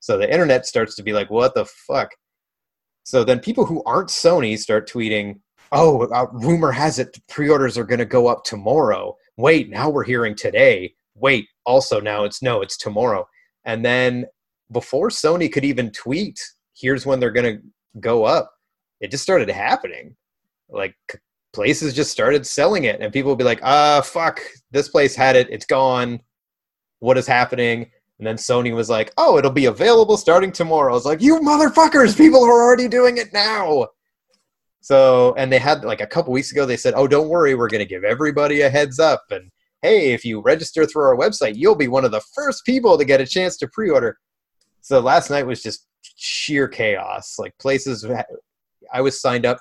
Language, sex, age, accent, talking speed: English, male, 30-49, American, 190 wpm